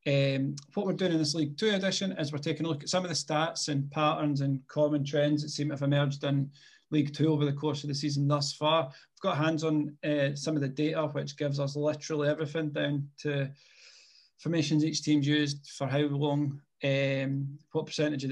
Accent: British